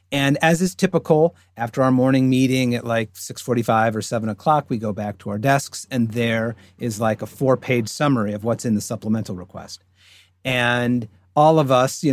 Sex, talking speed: male, 190 wpm